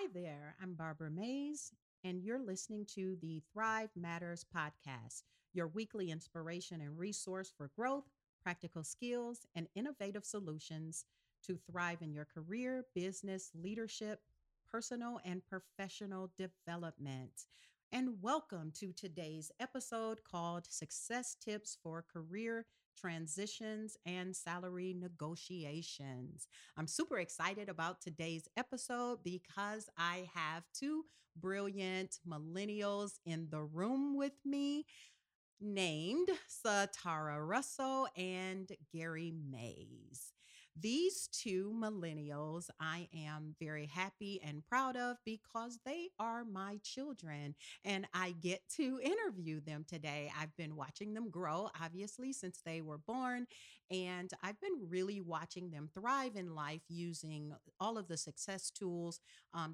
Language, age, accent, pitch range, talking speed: English, 40-59, American, 160-210 Hz, 120 wpm